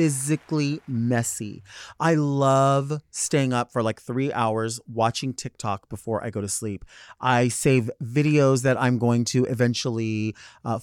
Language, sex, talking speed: English, male, 145 wpm